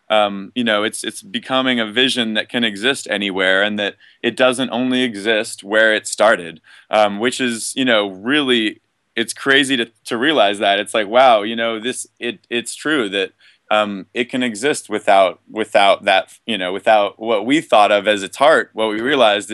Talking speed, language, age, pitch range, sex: 205 wpm, English, 20-39, 105-130 Hz, male